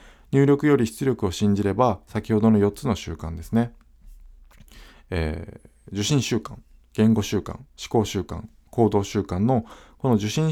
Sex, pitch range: male, 90-120 Hz